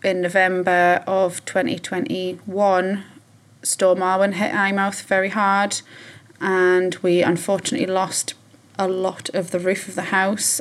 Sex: female